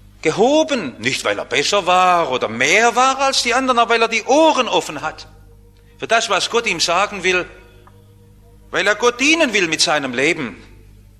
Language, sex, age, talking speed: English, male, 50-69, 180 wpm